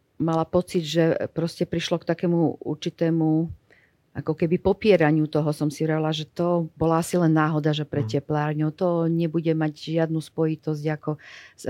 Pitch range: 150-170 Hz